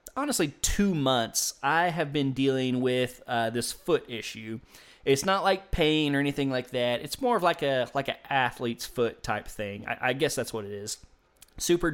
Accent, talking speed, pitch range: American, 195 wpm, 120-150 Hz